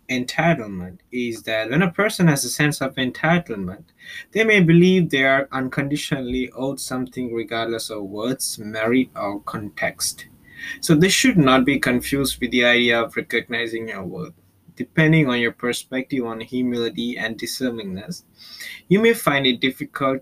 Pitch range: 115-155 Hz